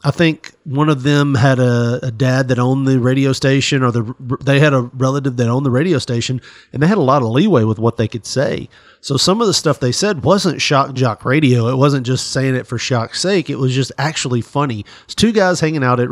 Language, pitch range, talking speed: English, 125-160 Hz, 250 wpm